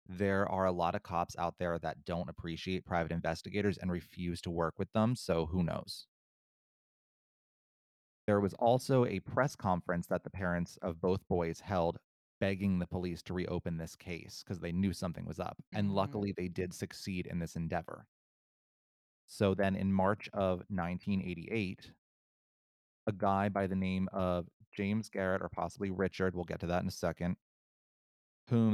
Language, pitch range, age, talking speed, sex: English, 90-110 Hz, 30-49, 170 wpm, male